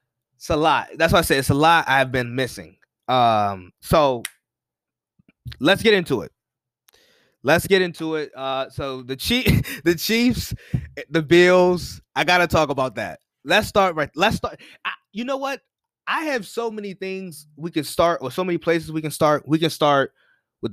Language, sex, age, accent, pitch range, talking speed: English, male, 20-39, American, 130-180 Hz, 185 wpm